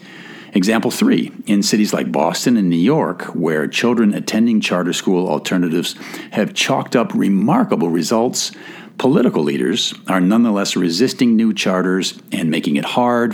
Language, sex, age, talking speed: English, male, 50-69, 140 wpm